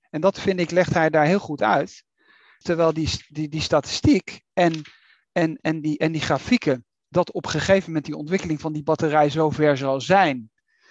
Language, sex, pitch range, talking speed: Dutch, male, 150-190 Hz, 195 wpm